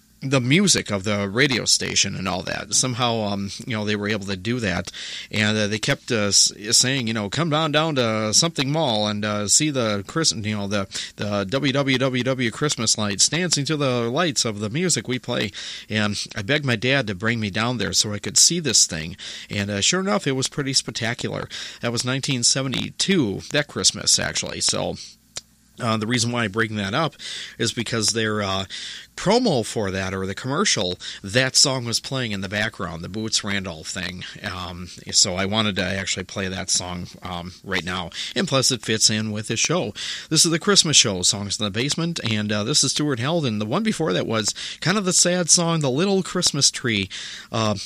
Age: 40-59